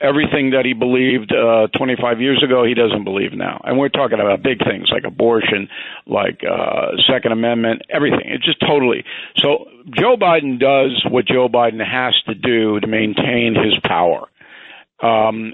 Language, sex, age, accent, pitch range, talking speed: English, male, 50-69, American, 115-145 Hz, 165 wpm